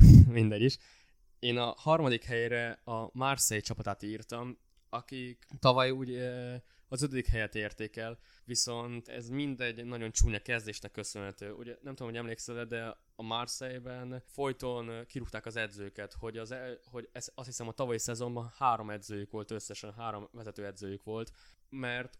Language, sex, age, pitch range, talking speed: Hungarian, male, 20-39, 105-120 Hz, 150 wpm